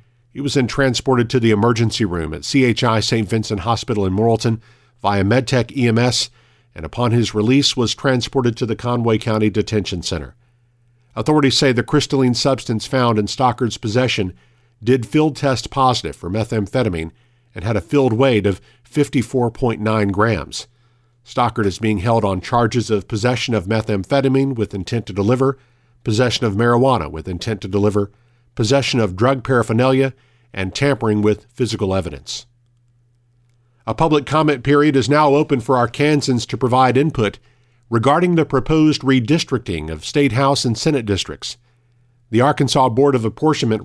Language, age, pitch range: English, 50-69, 110-135 Hz